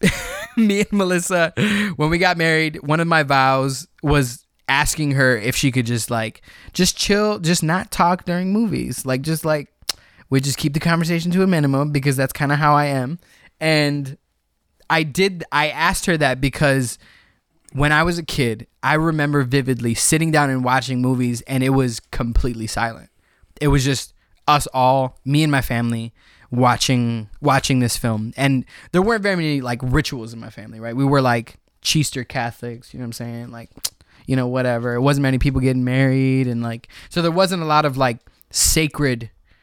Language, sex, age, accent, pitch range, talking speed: English, male, 20-39, American, 120-150 Hz, 190 wpm